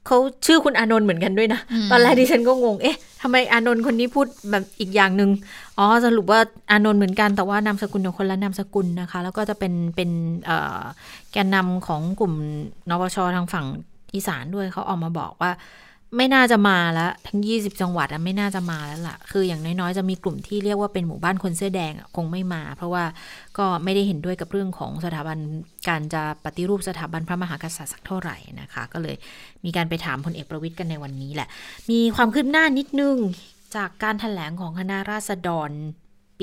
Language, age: Thai, 20-39